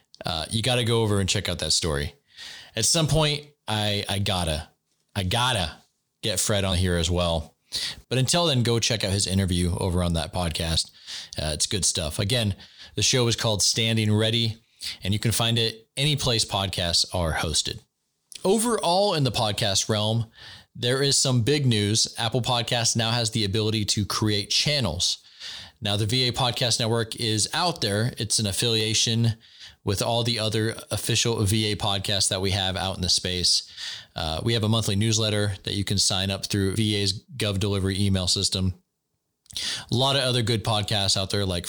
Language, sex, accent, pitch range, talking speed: English, male, American, 95-115 Hz, 185 wpm